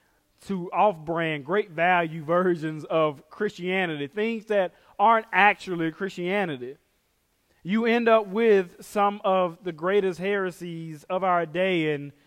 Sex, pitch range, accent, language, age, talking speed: male, 170-215 Hz, American, English, 30-49, 115 wpm